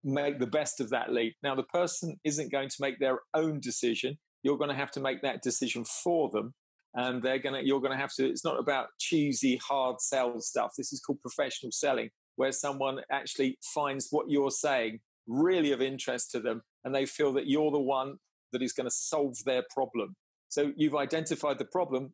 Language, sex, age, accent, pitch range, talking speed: English, male, 40-59, British, 130-150 Hz, 210 wpm